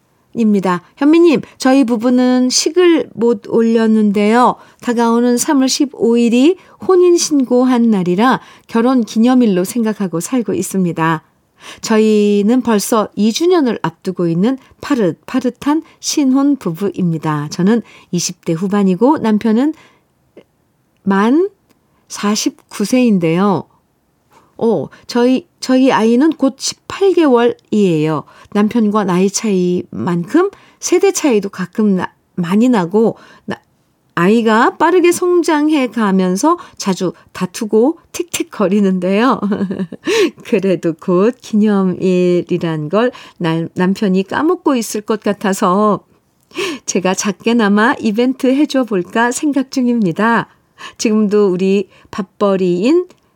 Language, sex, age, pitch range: Korean, female, 50-69, 190-260 Hz